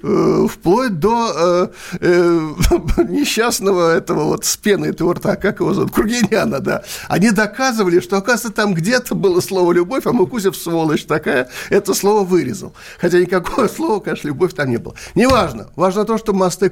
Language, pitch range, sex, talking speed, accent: Russian, 165-210 Hz, male, 160 wpm, native